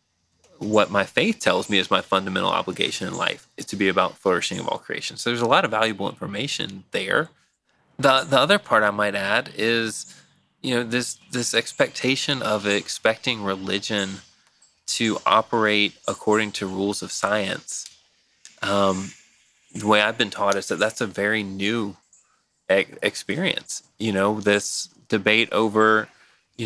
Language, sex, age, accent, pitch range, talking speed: English, male, 20-39, American, 100-120 Hz, 155 wpm